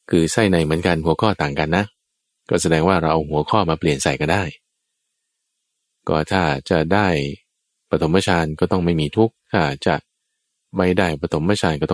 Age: 20-39